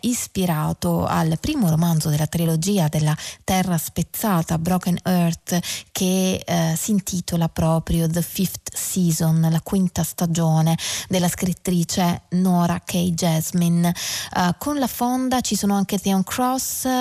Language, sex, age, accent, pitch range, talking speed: Italian, female, 20-39, native, 170-210 Hz, 125 wpm